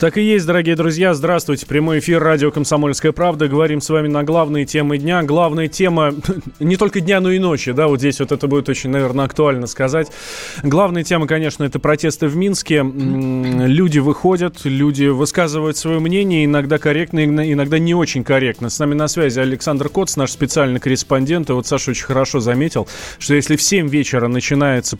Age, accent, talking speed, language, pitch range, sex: 20-39, native, 180 wpm, Russian, 130-160 Hz, male